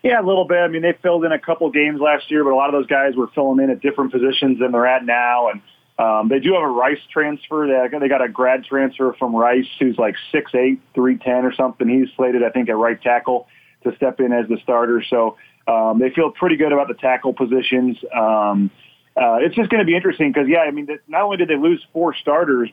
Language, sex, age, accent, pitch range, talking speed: English, male, 30-49, American, 125-155 Hz, 245 wpm